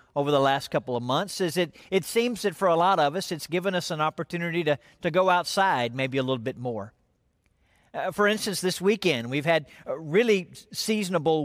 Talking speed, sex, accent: 205 wpm, male, American